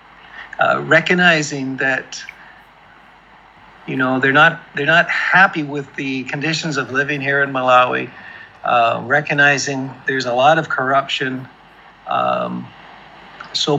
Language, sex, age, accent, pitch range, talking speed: English, male, 50-69, American, 130-155 Hz, 120 wpm